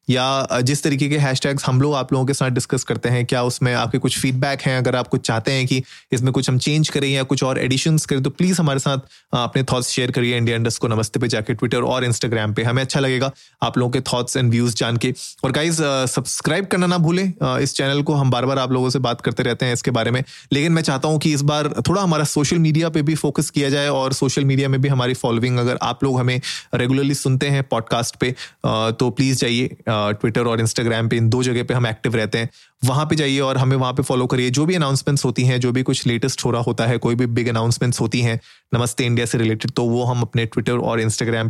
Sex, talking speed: male, 250 wpm